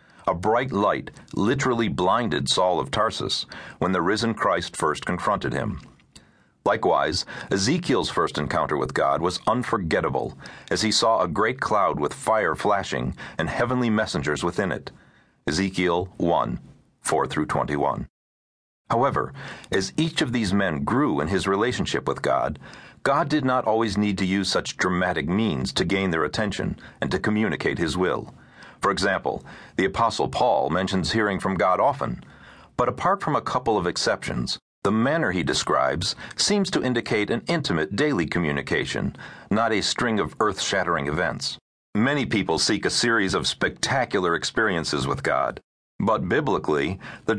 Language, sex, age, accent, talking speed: English, male, 40-59, American, 150 wpm